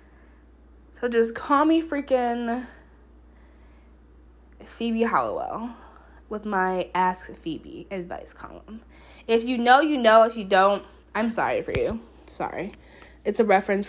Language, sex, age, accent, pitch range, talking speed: English, female, 20-39, American, 180-290 Hz, 120 wpm